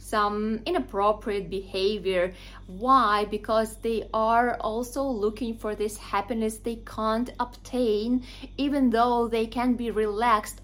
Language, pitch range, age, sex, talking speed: English, 195-250 Hz, 20-39, female, 120 wpm